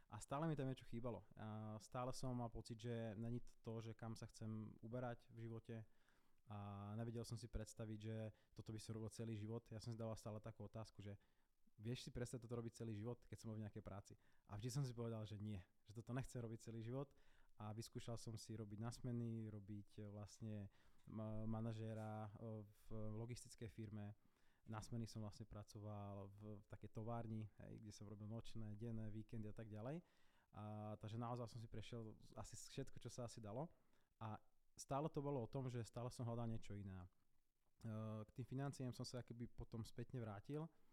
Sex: male